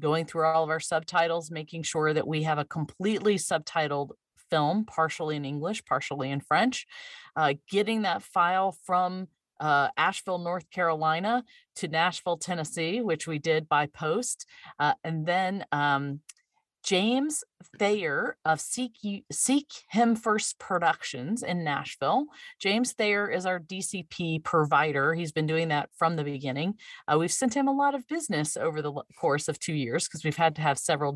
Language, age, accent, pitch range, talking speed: English, 40-59, American, 155-220 Hz, 160 wpm